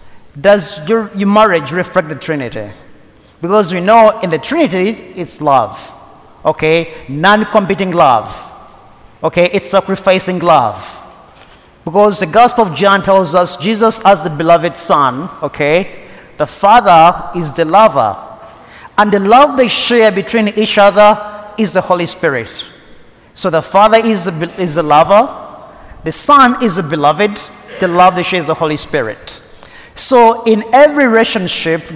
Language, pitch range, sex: English, 170-220 Hz, male